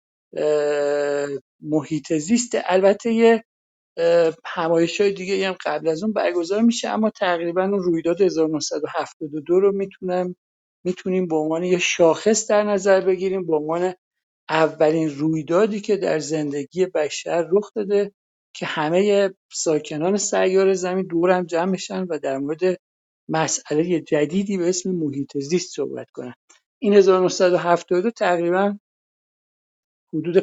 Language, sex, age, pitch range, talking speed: Persian, male, 50-69, 155-195 Hz, 120 wpm